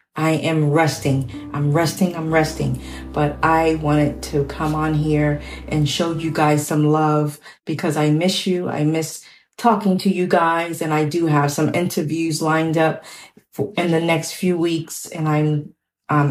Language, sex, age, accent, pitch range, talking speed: English, female, 40-59, American, 150-180 Hz, 170 wpm